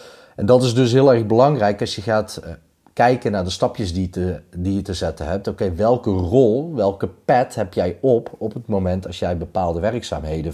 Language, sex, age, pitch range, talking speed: Dutch, male, 30-49, 85-105 Hz, 210 wpm